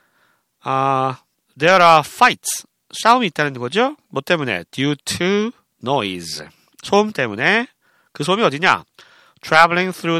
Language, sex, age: Korean, male, 40-59